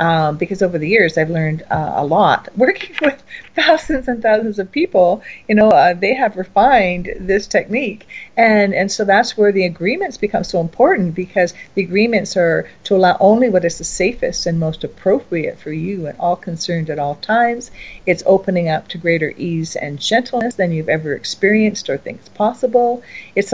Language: English